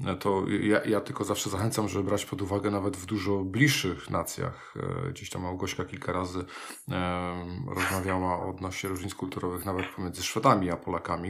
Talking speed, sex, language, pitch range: 160 wpm, male, Polish, 90-105 Hz